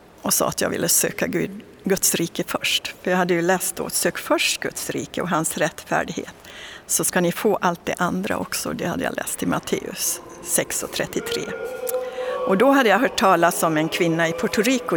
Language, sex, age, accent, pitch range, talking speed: Swedish, female, 60-79, native, 180-240 Hz, 205 wpm